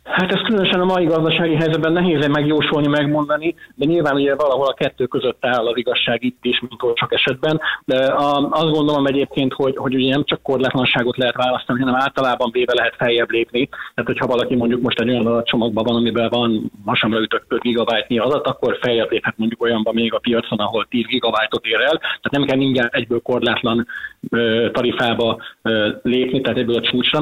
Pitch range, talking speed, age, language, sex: 115-145 Hz, 190 wpm, 30-49, Hungarian, male